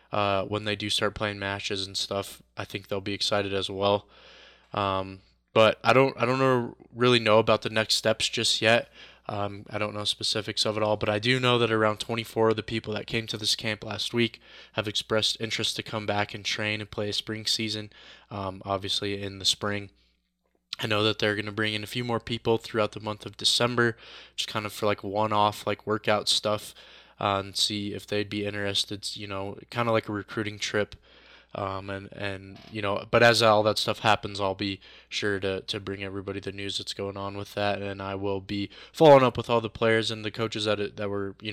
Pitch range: 100-110 Hz